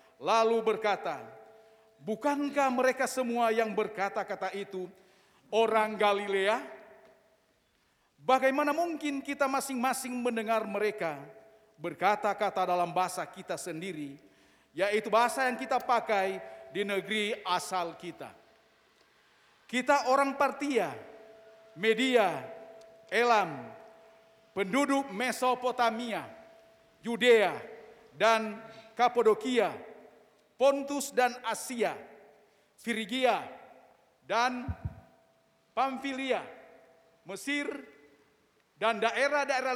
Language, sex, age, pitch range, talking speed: Indonesian, male, 50-69, 190-245 Hz, 75 wpm